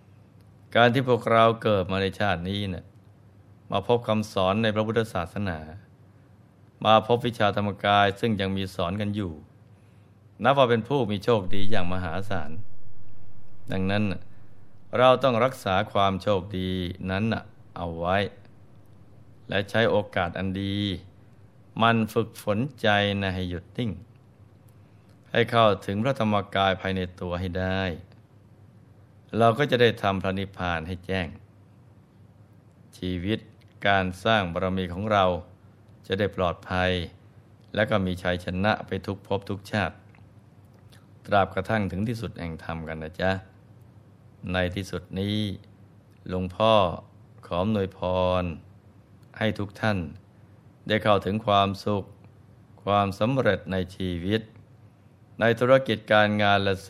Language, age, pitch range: Thai, 20-39, 95-110 Hz